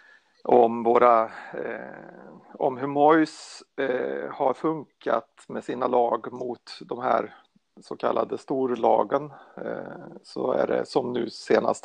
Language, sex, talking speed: Swedish, male, 125 wpm